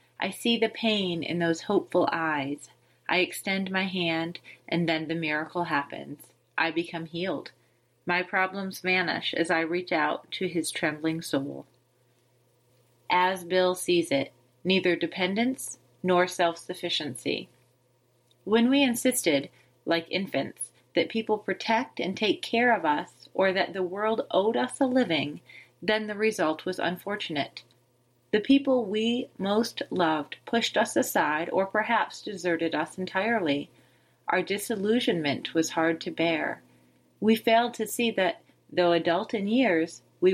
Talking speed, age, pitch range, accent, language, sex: 140 wpm, 30-49, 160-215 Hz, American, English, female